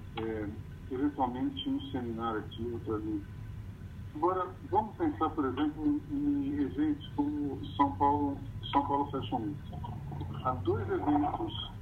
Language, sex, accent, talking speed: Portuguese, male, Brazilian, 125 wpm